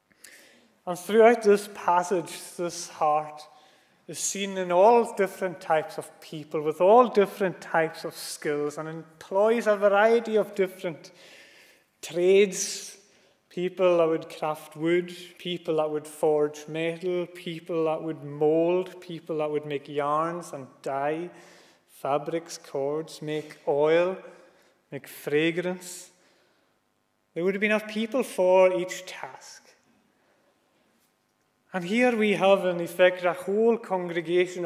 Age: 30-49